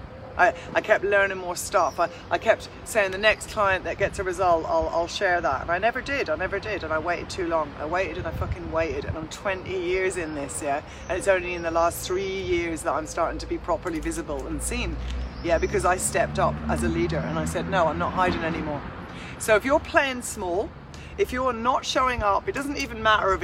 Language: English